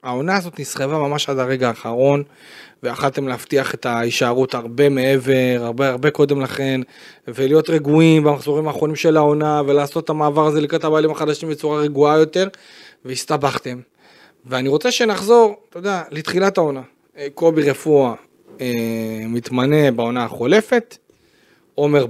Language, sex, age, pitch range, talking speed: Hebrew, male, 30-49, 135-180 Hz, 130 wpm